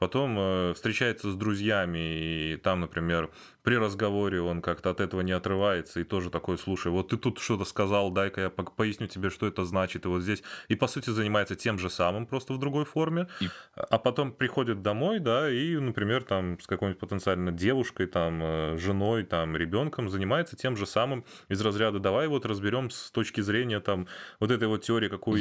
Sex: male